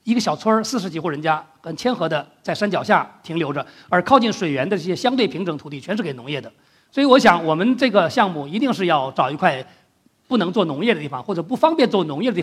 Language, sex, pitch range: Chinese, male, 170-245 Hz